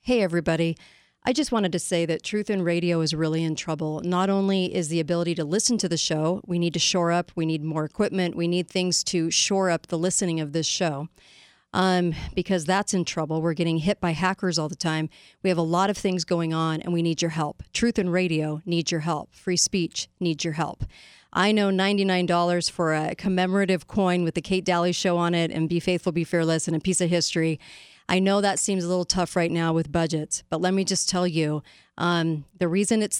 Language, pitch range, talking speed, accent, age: English, 165-190 Hz, 230 wpm, American, 40-59